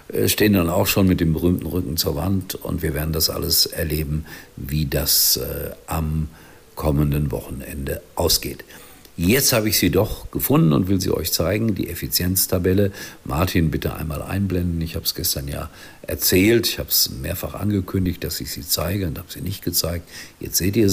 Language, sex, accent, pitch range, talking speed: German, male, German, 80-100 Hz, 180 wpm